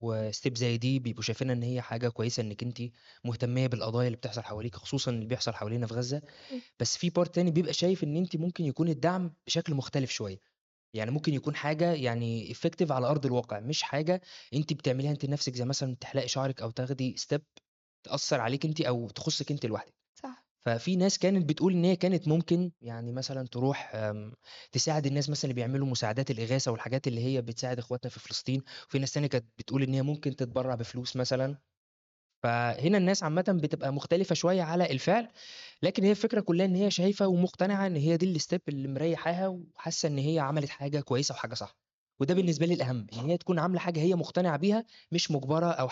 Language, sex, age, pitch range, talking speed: Arabic, male, 20-39, 125-170 Hz, 190 wpm